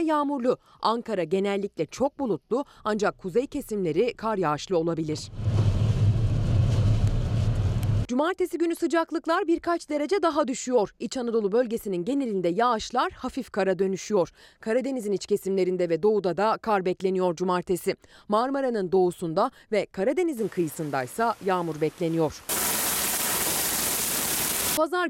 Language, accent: Turkish, native